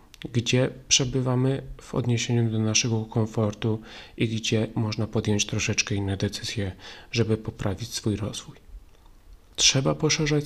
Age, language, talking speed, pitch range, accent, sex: 30-49, Polish, 115 wpm, 110-130 Hz, native, male